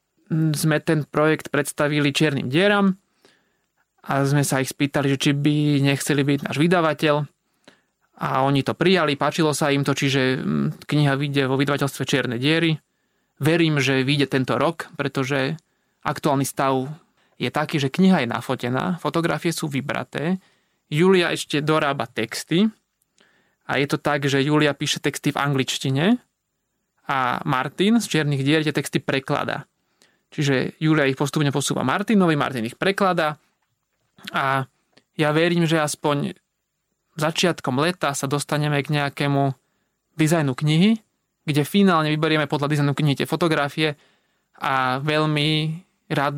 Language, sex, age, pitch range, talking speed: Slovak, male, 20-39, 140-165 Hz, 135 wpm